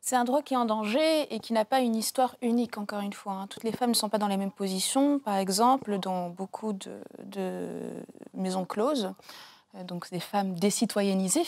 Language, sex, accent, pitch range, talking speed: French, female, French, 185-220 Hz, 205 wpm